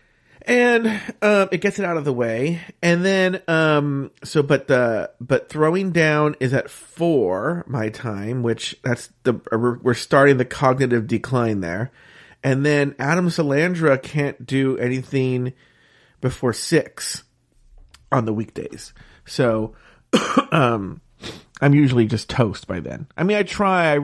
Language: English